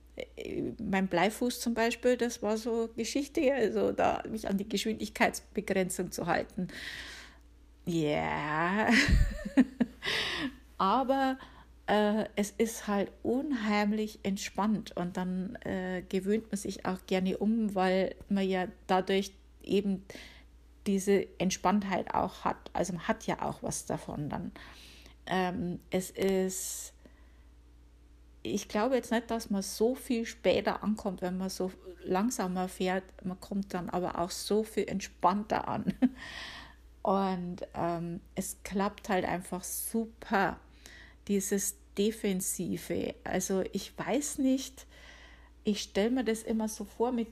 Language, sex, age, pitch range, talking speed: German, female, 50-69, 185-225 Hz, 120 wpm